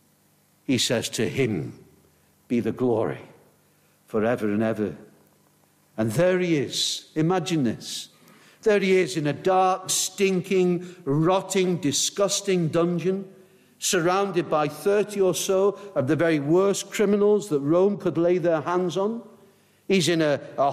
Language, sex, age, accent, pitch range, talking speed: English, male, 60-79, British, 120-195 Hz, 135 wpm